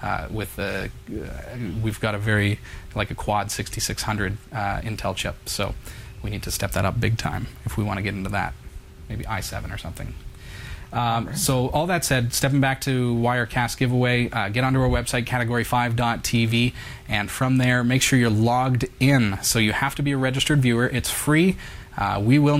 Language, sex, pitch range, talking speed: English, male, 105-130 Hz, 185 wpm